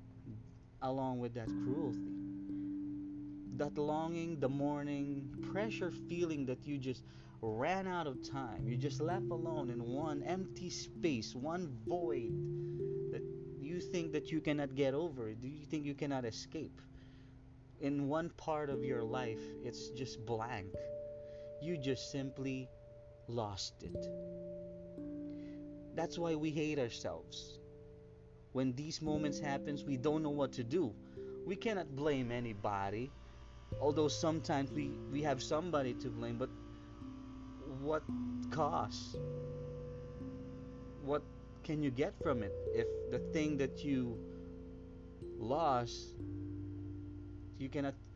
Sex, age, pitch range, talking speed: male, 30-49, 115-150 Hz, 125 wpm